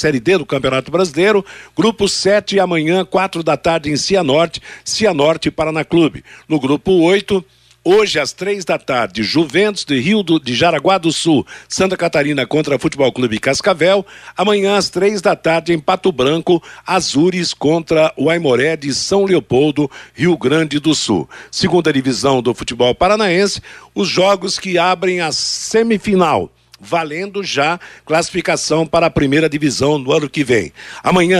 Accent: Brazilian